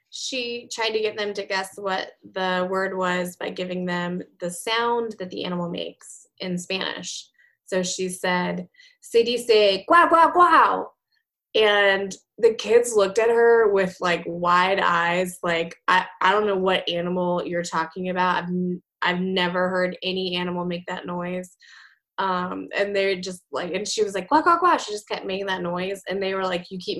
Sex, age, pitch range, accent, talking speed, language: female, 20-39, 180-250 Hz, American, 185 wpm, English